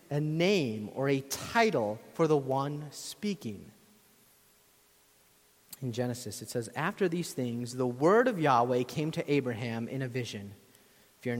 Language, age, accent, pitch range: English, 30-49, American, 125-185 Hz